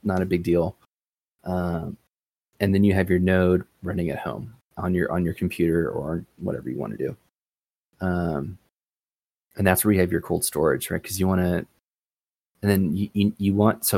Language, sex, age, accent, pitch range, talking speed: English, male, 20-39, American, 90-100 Hz, 200 wpm